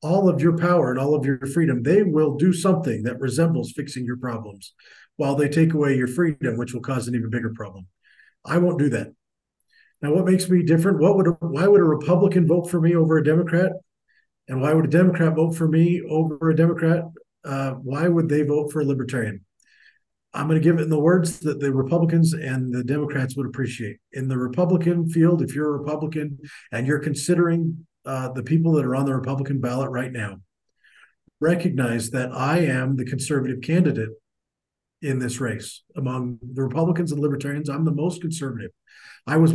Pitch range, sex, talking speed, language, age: 125-165 Hz, male, 200 wpm, English, 50-69